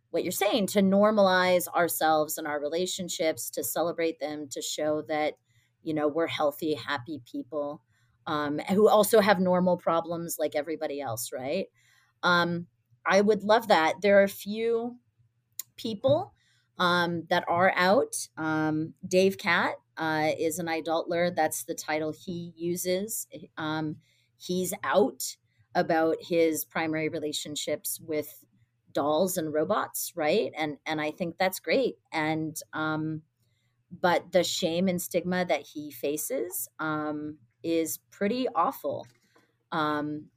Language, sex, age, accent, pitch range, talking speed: English, female, 30-49, American, 150-180 Hz, 135 wpm